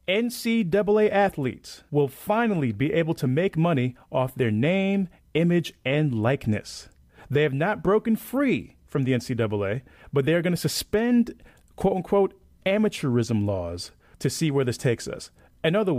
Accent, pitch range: American, 120-170 Hz